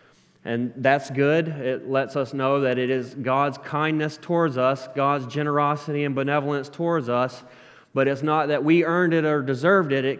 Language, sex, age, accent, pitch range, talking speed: English, male, 30-49, American, 130-155 Hz, 180 wpm